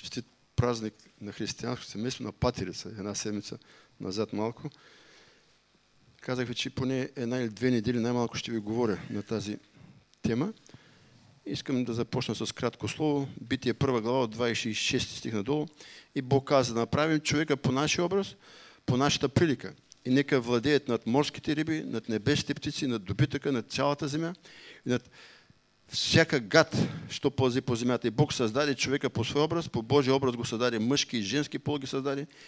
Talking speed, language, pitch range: 165 wpm, English, 120-150 Hz